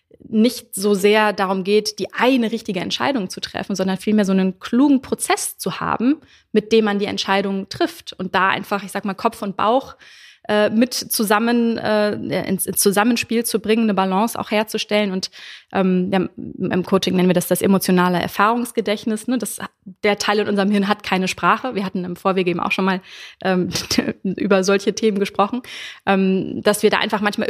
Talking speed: 180 wpm